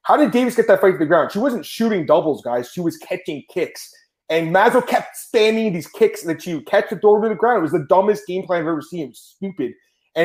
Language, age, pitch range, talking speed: English, 30-49, 155-230 Hz, 265 wpm